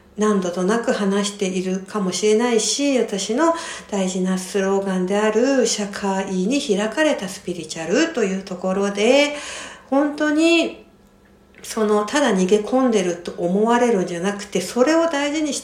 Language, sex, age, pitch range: Japanese, female, 60-79, 190-275 Hz